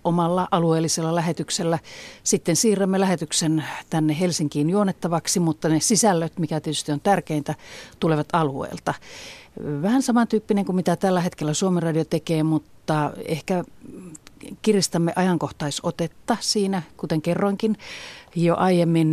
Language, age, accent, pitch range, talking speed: Finnish, 40-59, native, 150-185 Hz, 115 wpm